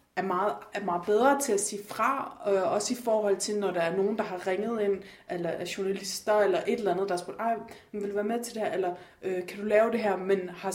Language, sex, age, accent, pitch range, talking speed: Danish, female, 30-49, native, 190-215 Hz, 270 wpm